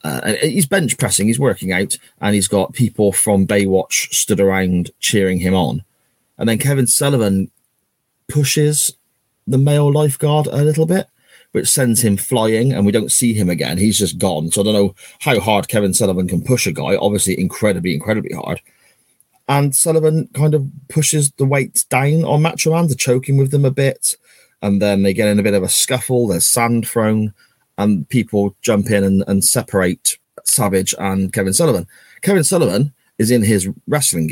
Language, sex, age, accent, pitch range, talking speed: English, male, 30-49, British, 100-135 Hz, 180 wpm